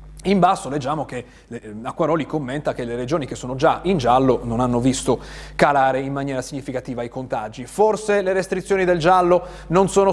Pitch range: 130-175 Hz